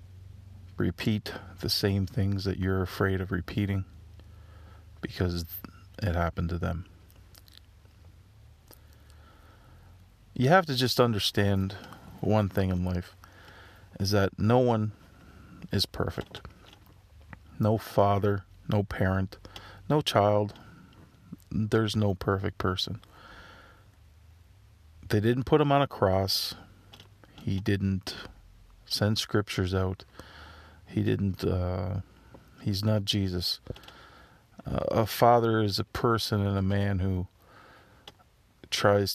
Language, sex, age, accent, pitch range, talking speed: English, male, 40-59, American, 90-105 Hz, 105 wpm